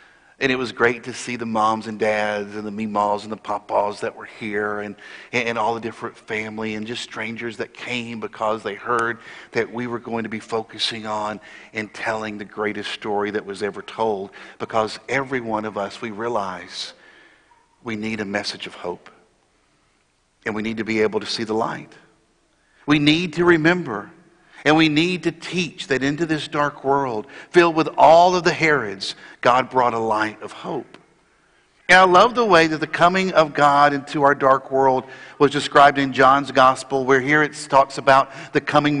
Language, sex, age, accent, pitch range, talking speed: English, male, 50-69, American, 115-165 Hz, 190 wpm